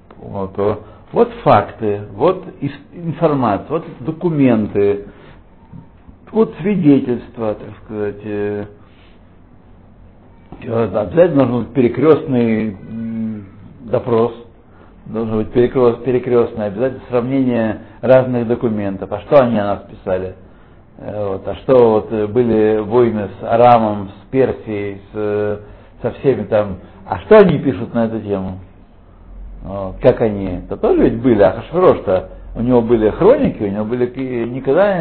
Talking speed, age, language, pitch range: 110 wpm, 60-79, Russian, 100-125 Hz